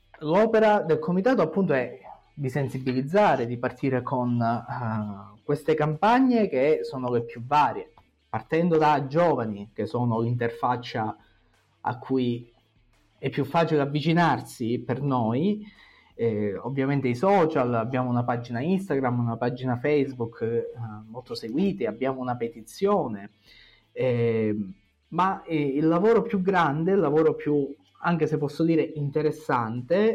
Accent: native